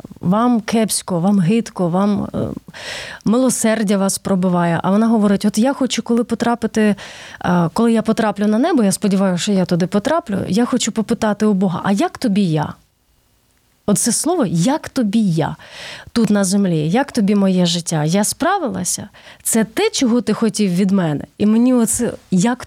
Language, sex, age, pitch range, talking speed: Ukrainian, female, 30-49, 195-240 Hz, 165 wpm